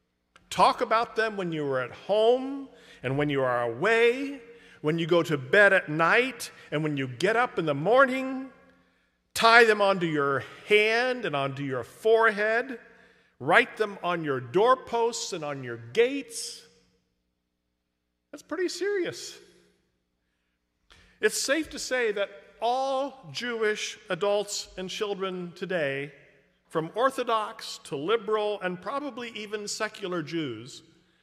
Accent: American